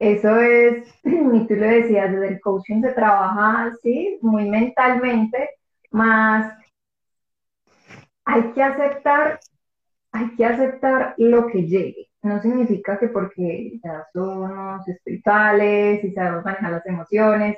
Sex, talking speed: female, 125 wpm